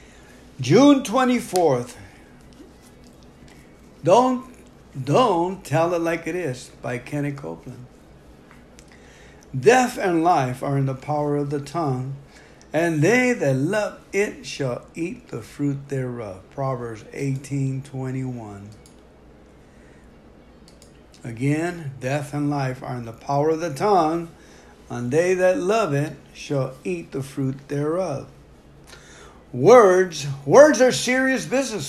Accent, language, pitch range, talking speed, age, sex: American, English, 135-180 Hz, 115 wpm, 60-79, male